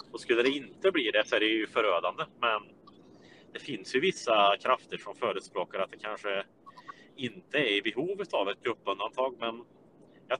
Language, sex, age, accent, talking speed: Swedish, male, 30-49, Norwegian, 180 wpm